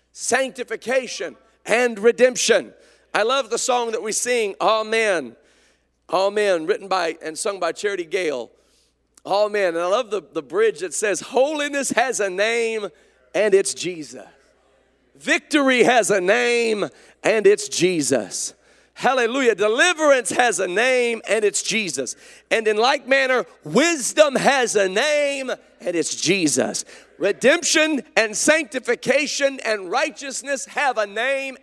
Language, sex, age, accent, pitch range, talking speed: English, male, 40-59, American, 210-300 Hz, 130 wpm